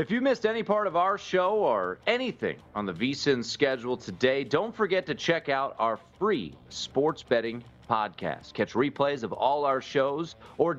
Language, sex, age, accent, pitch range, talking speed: English, male, 30-49, American, 110-150 Hz, 180 wpm